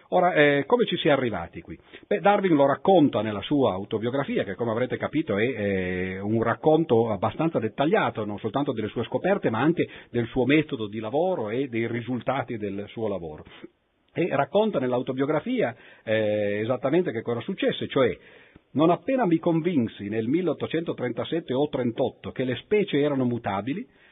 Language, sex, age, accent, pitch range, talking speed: Italian, male, 50-69, native, 120-170 Hz, 155 wpm